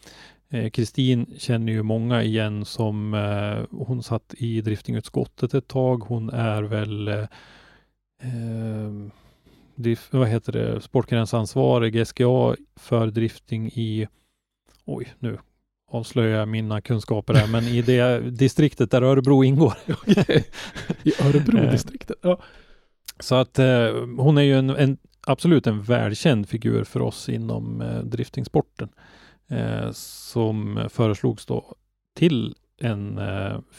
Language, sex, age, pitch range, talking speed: Swedish, male, 30-49, 105-130 Hz, 110 wpm